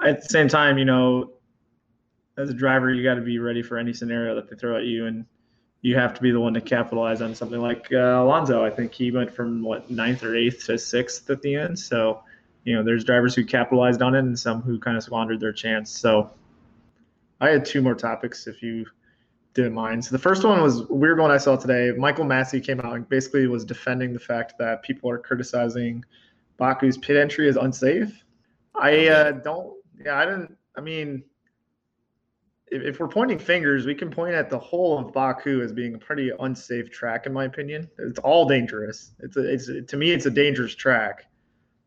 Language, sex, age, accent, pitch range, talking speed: English, male, 20-39, American, 115-135 Hz, 215 wpm